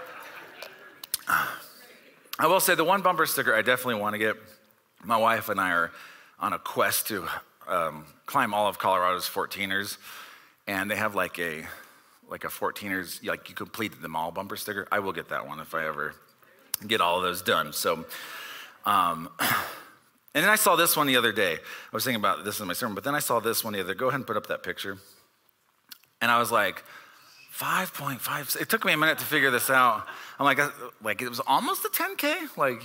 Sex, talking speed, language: male, 205 wpm, English